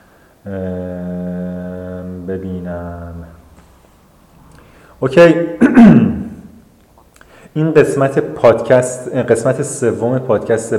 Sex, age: male, 30-49